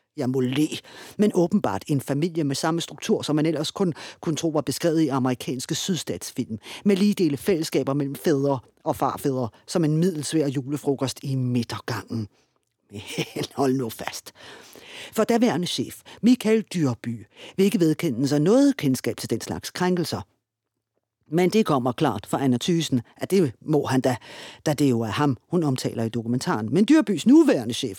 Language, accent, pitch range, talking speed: Danish, native, 125-170 Hz, 165 wpm